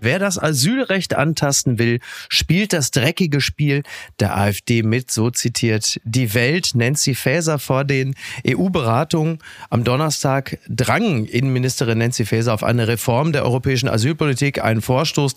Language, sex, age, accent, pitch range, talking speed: German, male, 30-49, German, 120-145 Hz, 135 wpm